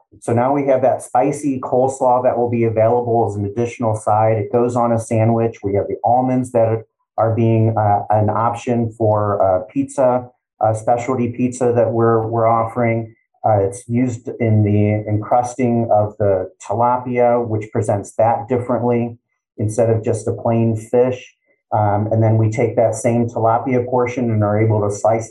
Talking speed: 175 wpm